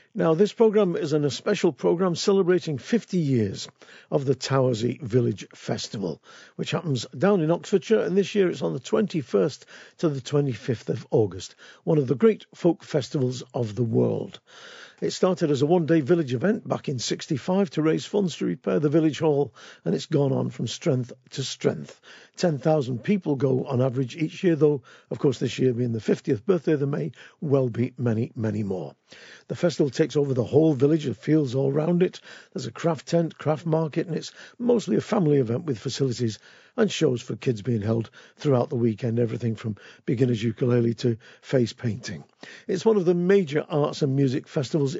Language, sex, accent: English, male, British